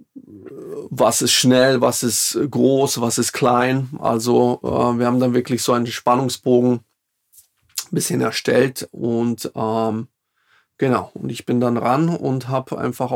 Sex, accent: male, German